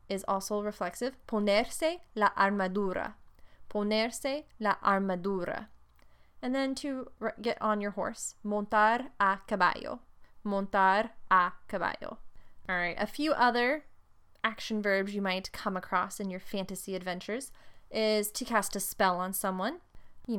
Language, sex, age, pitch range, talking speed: English, female, 20-39, 190-225 Hz, 130 wpm